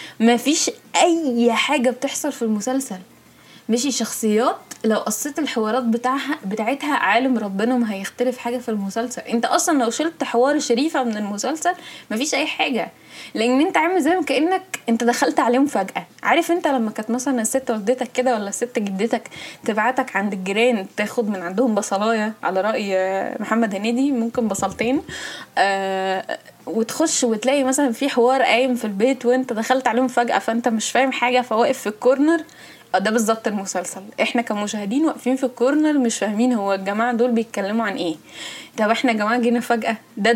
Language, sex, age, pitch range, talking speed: Arabic, female, 10-29, 220-270 Hz, 165 wpm